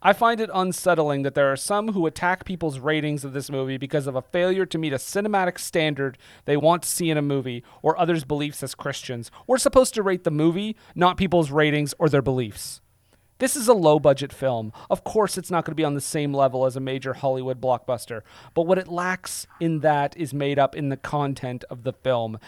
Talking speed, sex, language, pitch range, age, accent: 225 wpm, male, English, 135-175 Hz, 30-49, American